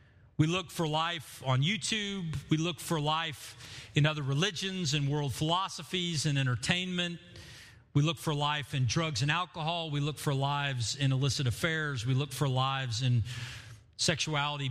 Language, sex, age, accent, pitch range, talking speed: English, male, 40-59, American, 120-185 Hz, 160 wpm